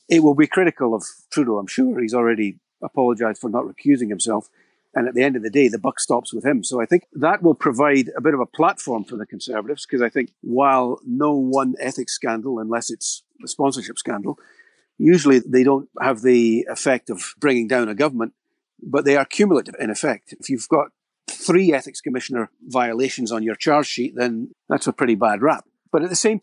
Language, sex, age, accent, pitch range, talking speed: English, male, 50-69, British, 120-145 Hz, 210 wpm